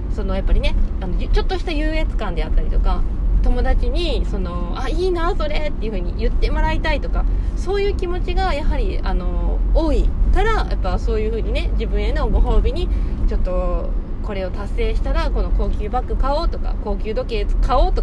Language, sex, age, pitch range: Japanese, female, 20-39, 65-95 Hz